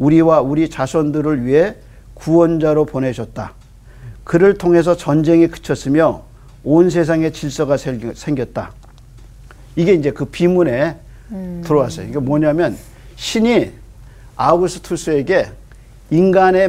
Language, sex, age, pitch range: Korean, male, 50-69, 120-165 Hz